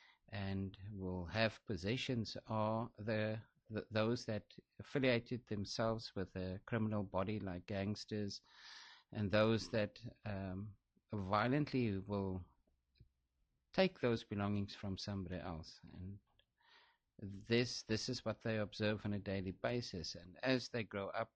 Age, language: 50-69, English